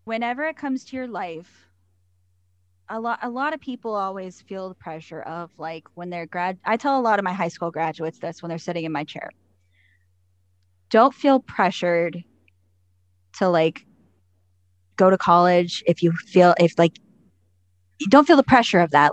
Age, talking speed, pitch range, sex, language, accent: 10-29, 175 wpm, 165-235 Hz, female, English, American